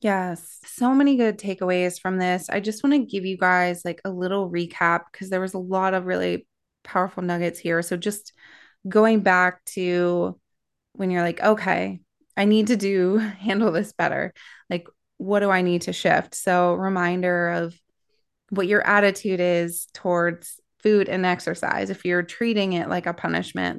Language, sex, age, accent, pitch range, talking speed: English, female, 20-39, American, 175-200 Hz, 175 wpm